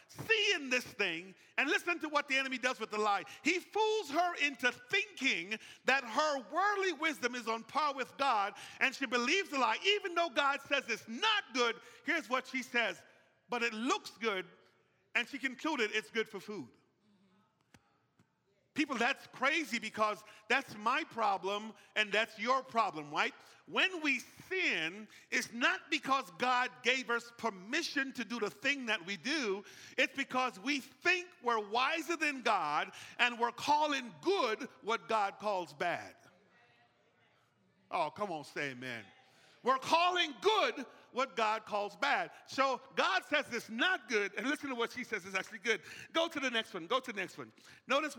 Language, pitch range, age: English, 215-295 Hz, 40-59